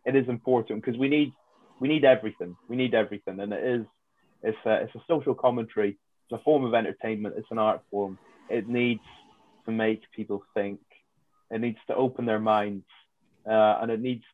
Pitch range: 110-125 Hz